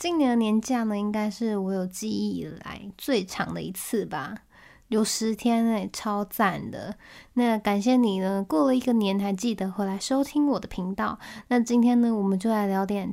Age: 20-39